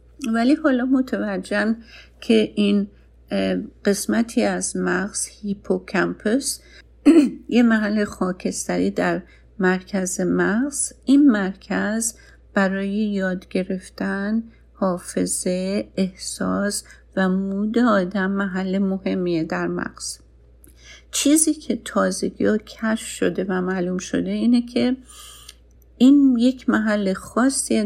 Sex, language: female, Persian